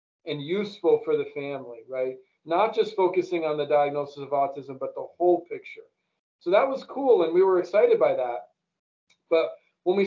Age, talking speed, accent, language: 40-59, 185 wpm, American, English